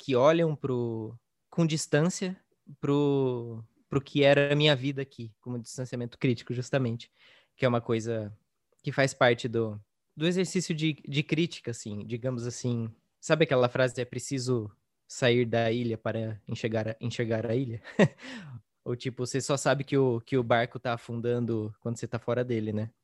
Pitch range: 115-145 Hz